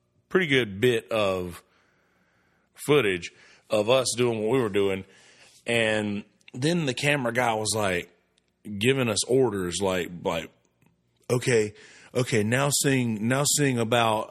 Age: 30-49